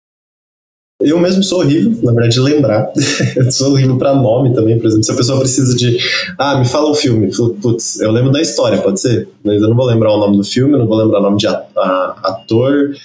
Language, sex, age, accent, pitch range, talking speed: Portuguese, male, 20-39, Brazilian, 100-125 Hz, 235 wpm